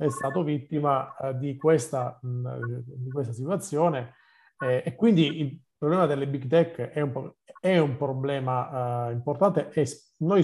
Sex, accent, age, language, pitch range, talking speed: male, native, 40-59, Italian, 130-155 Hz, 140 wpm